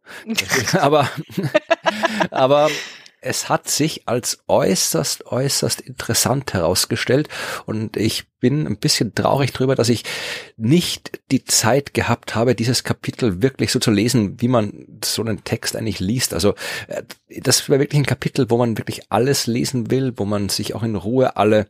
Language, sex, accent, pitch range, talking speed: German, male, German, 105-130 Hz, 160 wpm